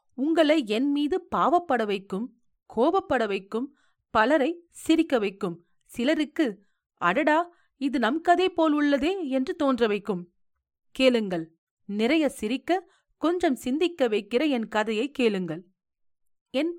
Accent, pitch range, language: native, 200-300 Hz, Tamil